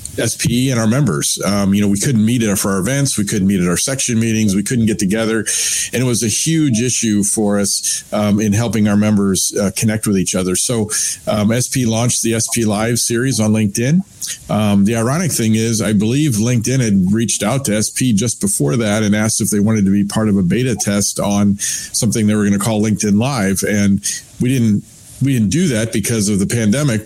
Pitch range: 100-120 Hz